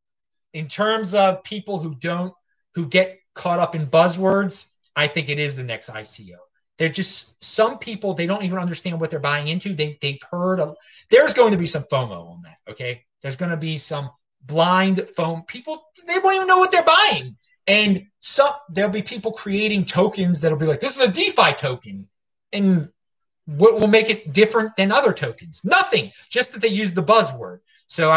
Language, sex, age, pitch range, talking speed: English, male, 30-49, 145-205 Hz, 200 wpm